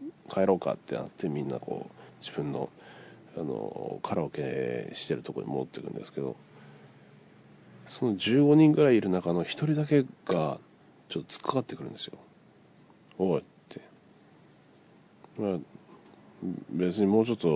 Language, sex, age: Japanese, male, 40-59